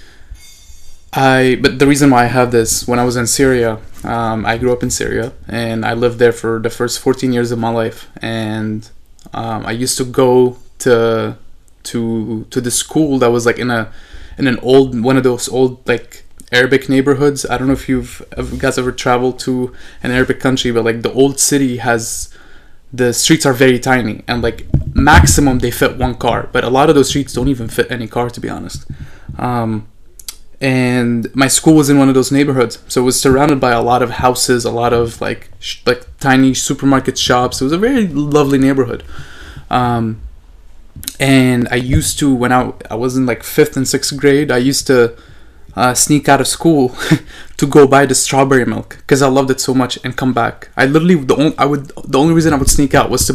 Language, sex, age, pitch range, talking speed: English, male, 20-39, 115-135 Hz, 210 wpm